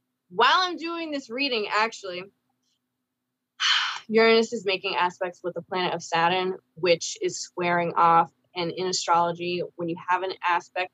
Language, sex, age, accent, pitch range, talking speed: English, female, 20-39, American, 170-195 Hz, 150 wpm